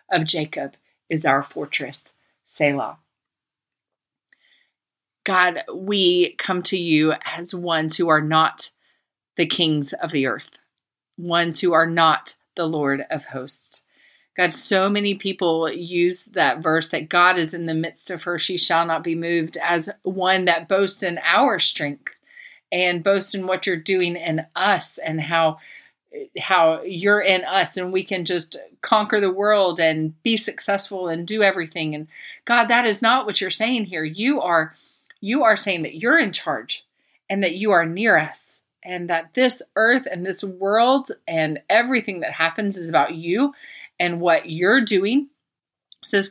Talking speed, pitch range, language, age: 165 wpm, 165-215 Hz, English, 40-59